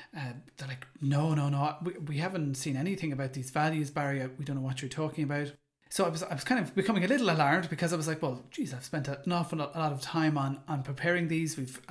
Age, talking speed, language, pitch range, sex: 30-49, 265 wpm, English, 140-170 Hz, male